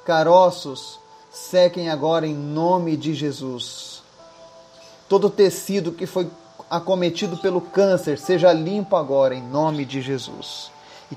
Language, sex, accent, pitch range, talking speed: Portuguese, male, Brazilian, 140-170 Hz, 120 wpm